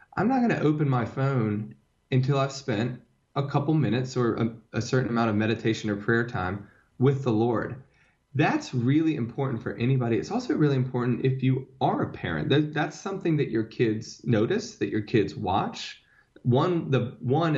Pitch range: 105-130 Hz